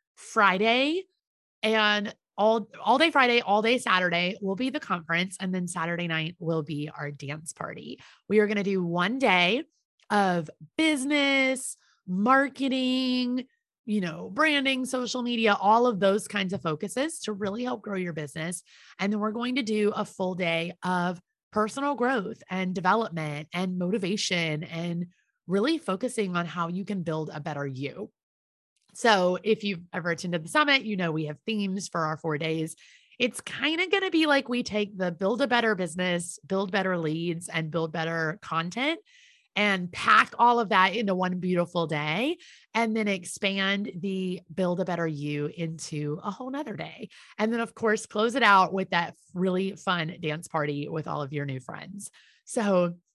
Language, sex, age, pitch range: English, female, 30-49, 170-230 Hz